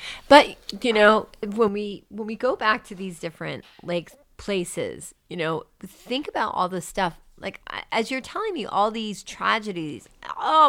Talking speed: 170 wpm